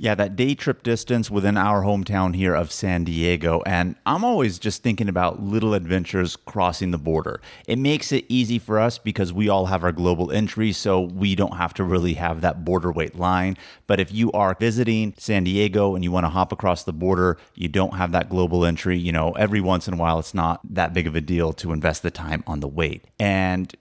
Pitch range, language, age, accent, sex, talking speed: 85-105 Hz, English, 30-49, American, male, 225 wpm